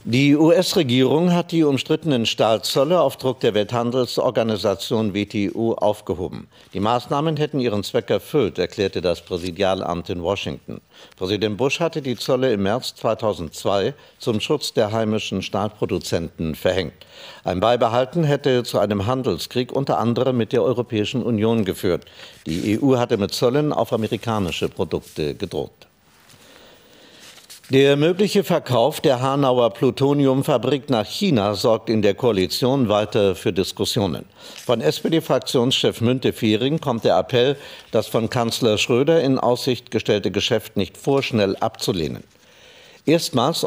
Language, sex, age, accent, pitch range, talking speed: German, male, 50-69, German, 105-135 Hz, 125 wpm